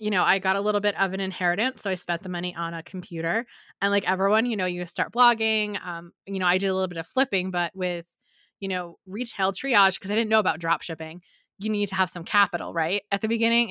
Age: 20-39